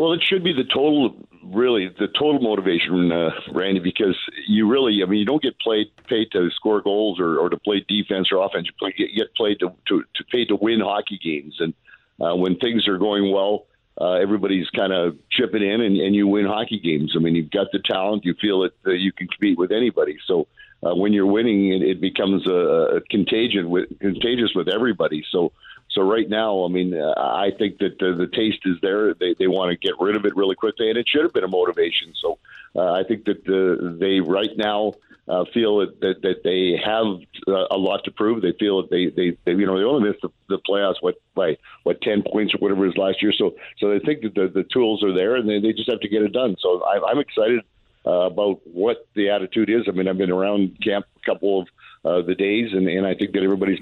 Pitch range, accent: 95-110 Hz, American